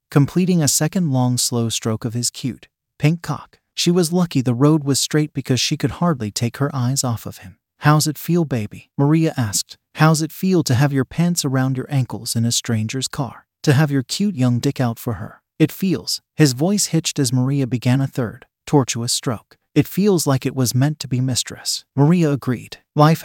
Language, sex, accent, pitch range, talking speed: English, male, American, 125-155 Hz, 210 wpm